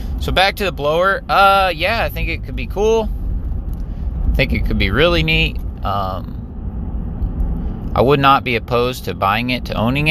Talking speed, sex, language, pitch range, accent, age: 185 wpm, male, English, 95-125 Hz, American, 30-49